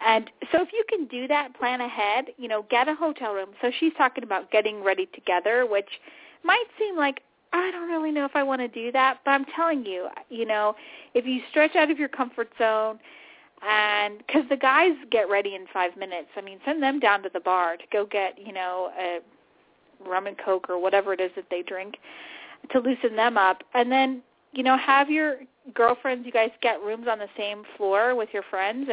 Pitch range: 200-275 Hz